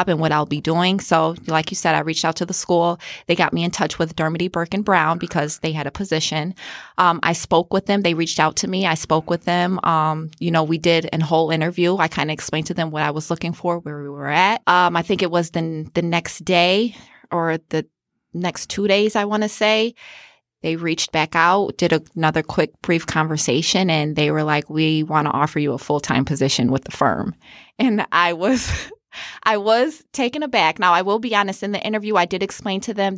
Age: 20-39